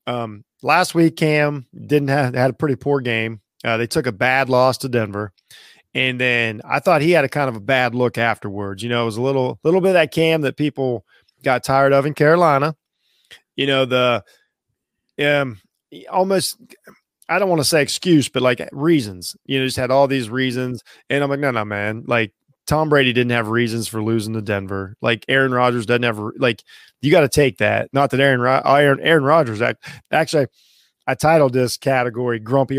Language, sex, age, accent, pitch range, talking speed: English, male, 20-39, American, 115-145 Hz, 205 wpm